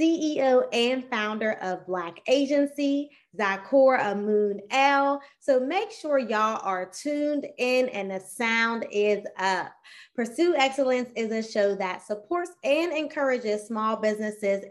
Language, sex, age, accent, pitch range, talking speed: English, female, 20-39, American, 200-275 Hz, 130 wpm